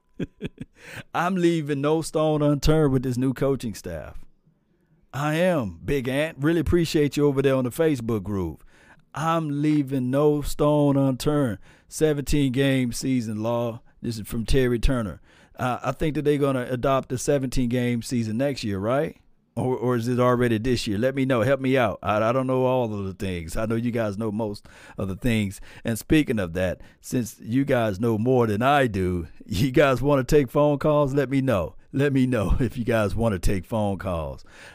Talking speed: 195 wpm